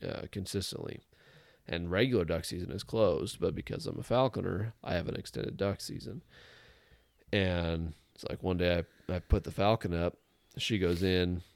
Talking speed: 170 wpm